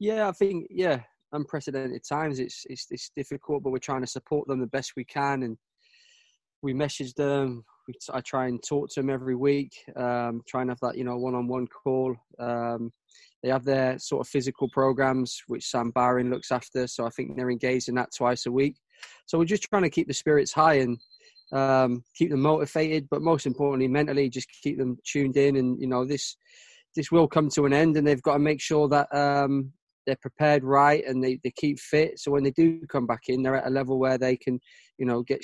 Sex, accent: male, British